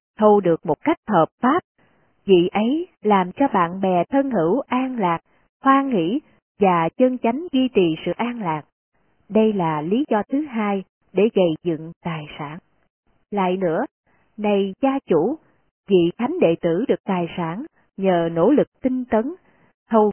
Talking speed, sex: 165 wpm, female